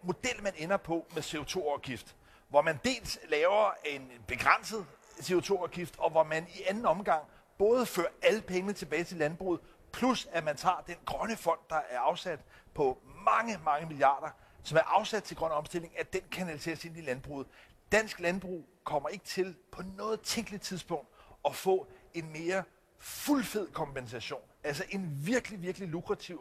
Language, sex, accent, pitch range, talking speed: Danish, male, native, 165-205 Hz, 165 wpm